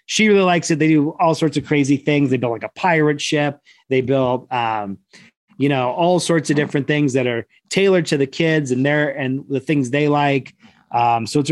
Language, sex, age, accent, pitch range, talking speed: English, male, 30-49, American, 130-160 Hz, 230 wpm